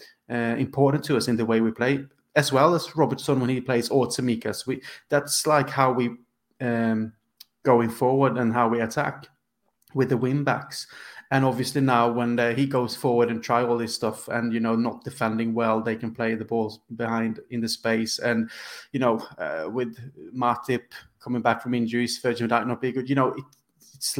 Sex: male